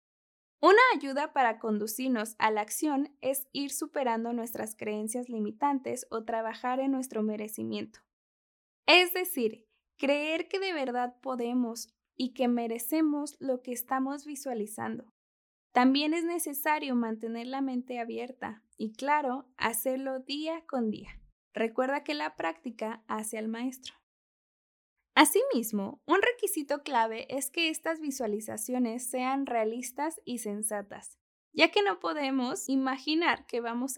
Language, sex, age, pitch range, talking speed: Spanish, female, 10-29, 230-295 Hz, 125 wpm